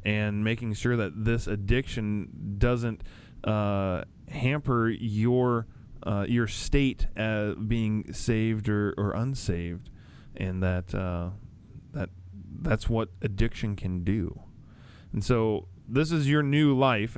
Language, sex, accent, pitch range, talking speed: English, male, American, 100-120 Hz, 120 wpm